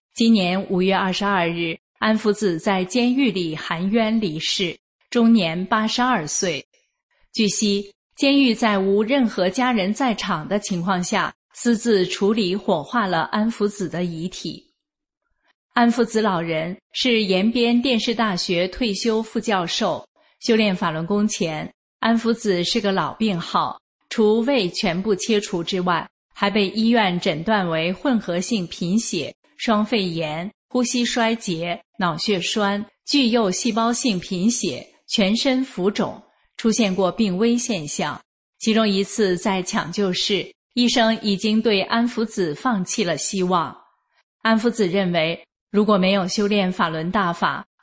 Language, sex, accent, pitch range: English, female, Chinese, 185-230 Hz